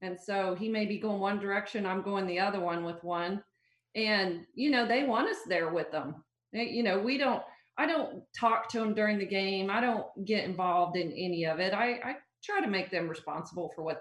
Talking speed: 230 wpm